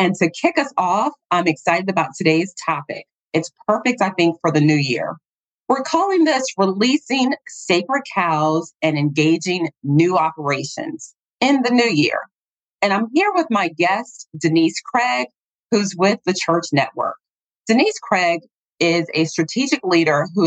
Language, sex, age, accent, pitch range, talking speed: English, female, 30-49, American, 155-220 Hz, 150 wpm